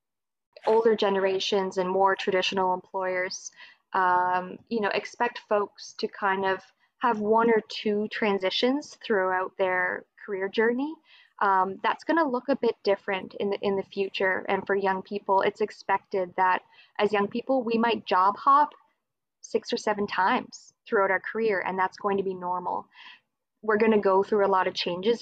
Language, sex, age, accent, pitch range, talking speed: English, female, 20-39, American, 185-220 Hz, 170 wpm